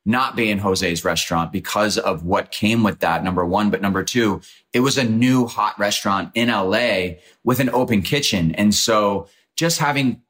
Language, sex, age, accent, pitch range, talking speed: English, male, 30-49, American, 95-115 Hz, 185 wpm